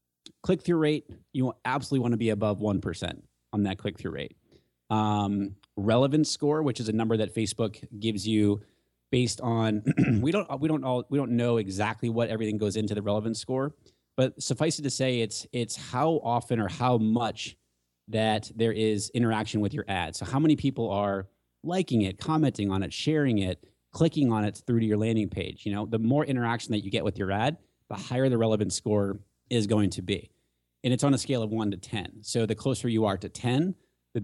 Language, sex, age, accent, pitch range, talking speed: English, male, 30-49, American, 100-125 Hz, 210 wpm